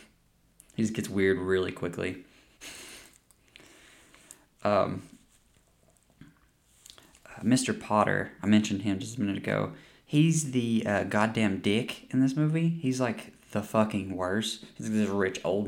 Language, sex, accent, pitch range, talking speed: English, male, American, 95-135 Hz, 130 wpm